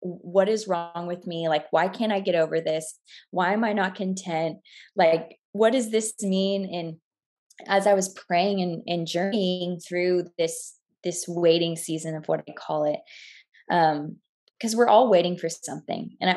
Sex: female